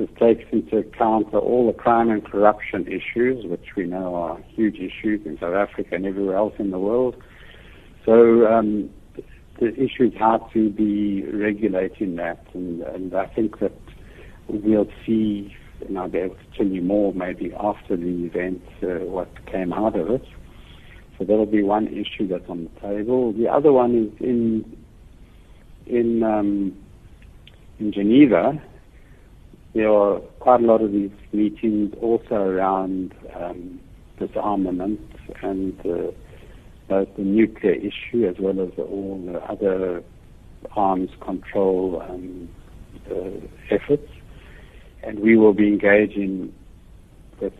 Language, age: English, 70-89